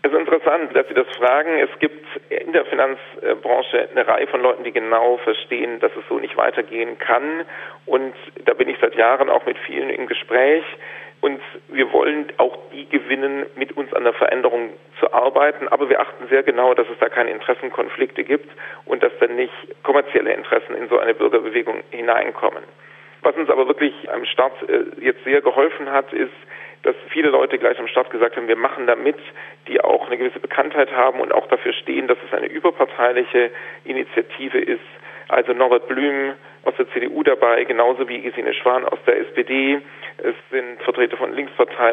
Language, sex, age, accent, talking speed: German, male, 40-59, German, 185 wpm